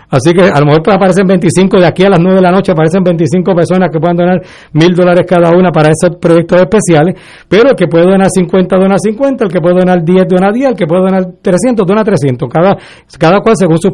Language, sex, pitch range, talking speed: Spanish, male, 160-195 Hz, 245 wpm